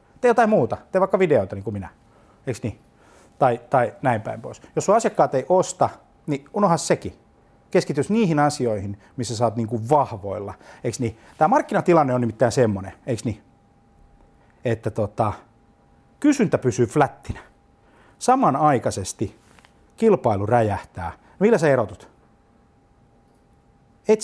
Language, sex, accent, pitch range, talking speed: Finnish, male, native, 105-145 Hz, 130 wpm